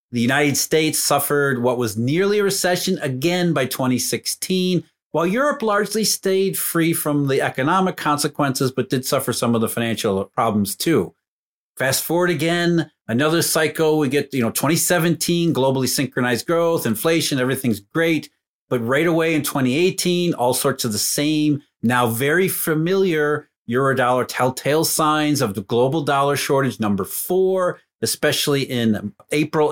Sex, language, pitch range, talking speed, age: male, English, 125-165 Hz, 145 wpm, 40-59